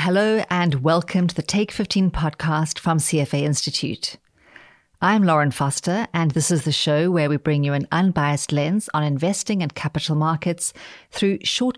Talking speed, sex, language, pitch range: 170 wpm, female, English, 145-175 Hz